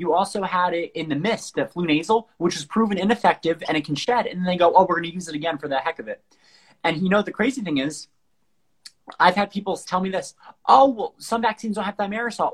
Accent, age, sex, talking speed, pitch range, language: American, 30-49, male, 265 wpm, 165-205 Hz, English